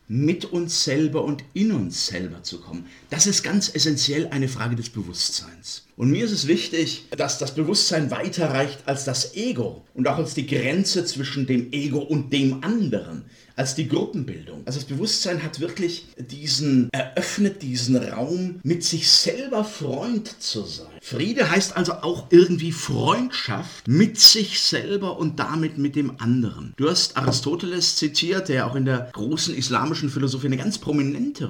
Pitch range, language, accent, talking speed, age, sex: 130-170 Hz, German, German, 170 wpm, 50-69, male